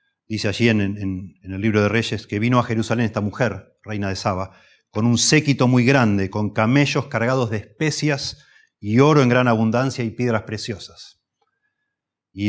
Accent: Argentinian